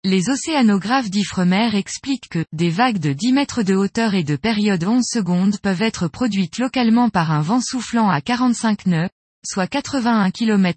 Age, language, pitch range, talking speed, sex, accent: 20-39, French, 180-250 Hz, 175 wpm, female, French